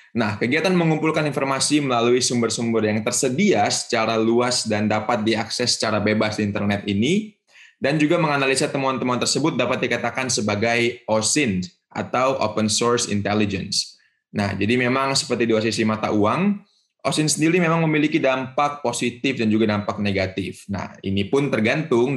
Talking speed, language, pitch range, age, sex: 145 wpm, Indonesian, 110-135 Hz, 20-39, male